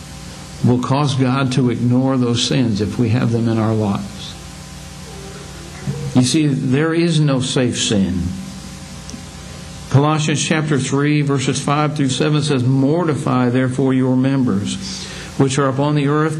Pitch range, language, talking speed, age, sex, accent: 130-160 Hz, English, 140 wpm, 60-79, male, American